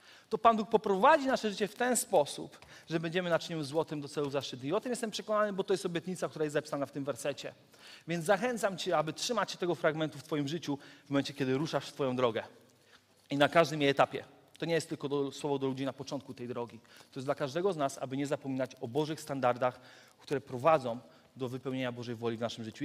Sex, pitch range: male, 135-190 Hz